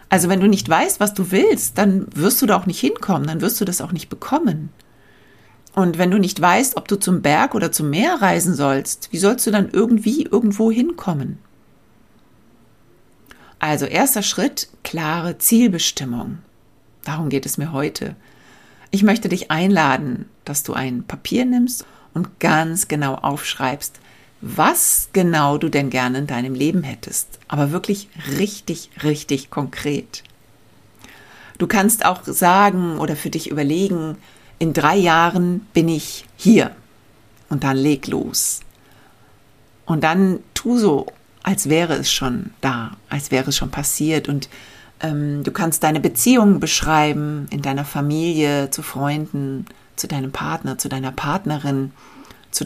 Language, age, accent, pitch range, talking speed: German, 60-79, German, 140-195 Hz, 150 wpm